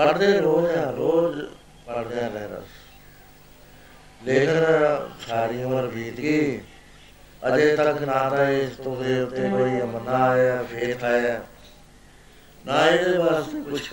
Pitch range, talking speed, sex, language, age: 115-145 Hz, 115 wpm, male, Punjabi, 60-79